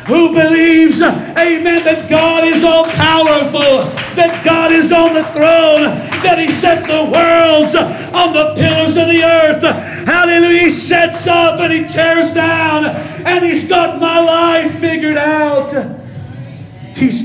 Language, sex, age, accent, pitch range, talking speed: English, male, 40-59, American, 305-340 Hz, 145 wpm